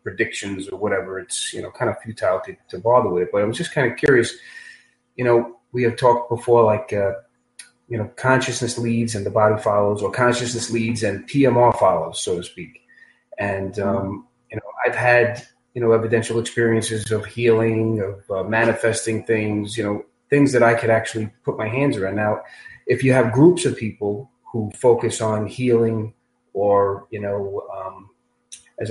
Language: English